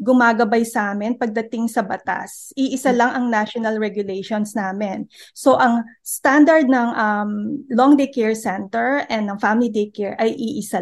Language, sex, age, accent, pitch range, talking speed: Filipino, female, 20-39, native, 210-250 Hz, 155 wpm